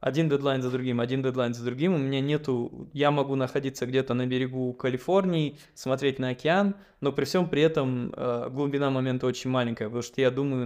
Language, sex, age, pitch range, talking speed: Russian, male, 20-39, 125-165 Hz, 190 wpm